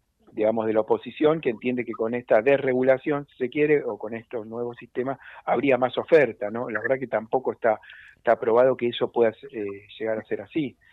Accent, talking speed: Argentinian, 205 wpm